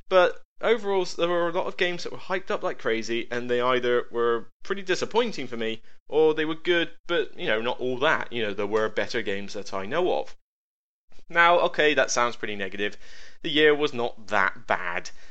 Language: English